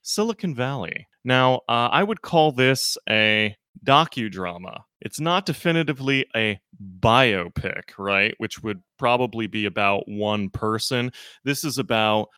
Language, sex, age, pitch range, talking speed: English, male, 30-49, 105-140 Hz, 125 wpm